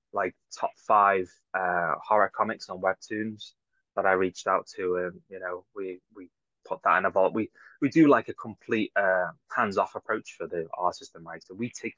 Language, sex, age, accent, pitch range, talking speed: English, male, 20-39, British, 95-115 Hz, 210 wpm